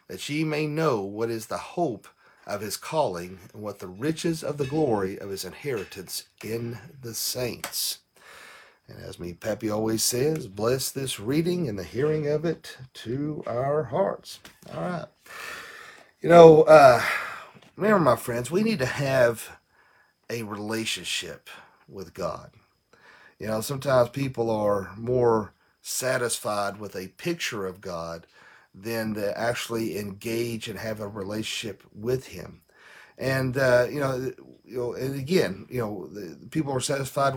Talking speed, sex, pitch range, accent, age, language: 150 wpm, male, 110-140 Hz, American, 40-59, English